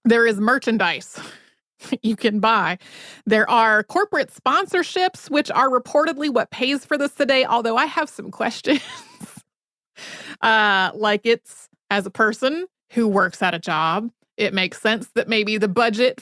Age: 30-49